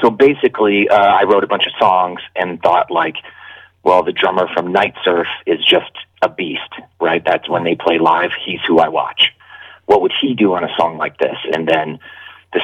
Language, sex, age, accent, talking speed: English, male, 30-49, American, 210 wpm